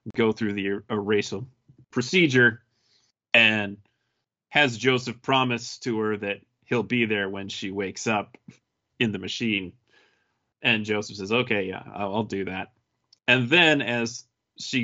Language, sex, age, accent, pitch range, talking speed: English, male, 30-49, American, 110-125 Hz, 145 wpm